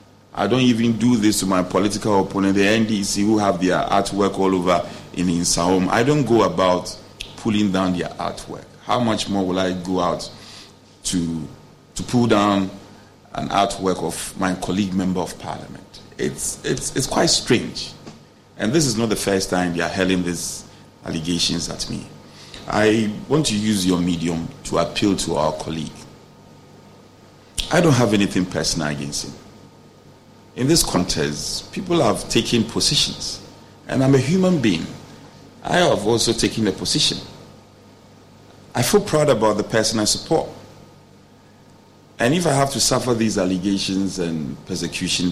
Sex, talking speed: male, 160 wpm